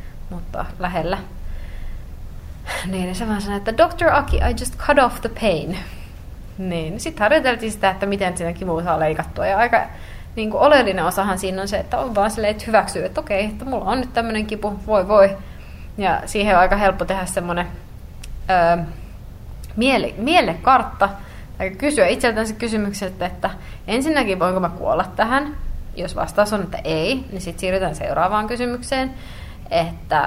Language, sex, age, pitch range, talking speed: Finnish, female, 20-39, 170-210 Hz, 165 wpm